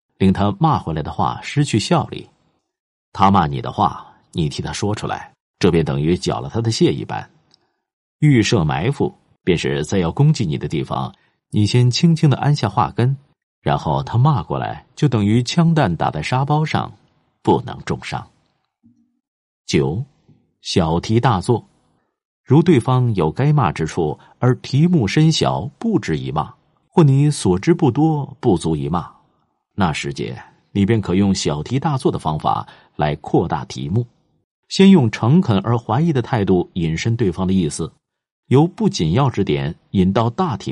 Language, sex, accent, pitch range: Chinese, male, native, 100-155 Hz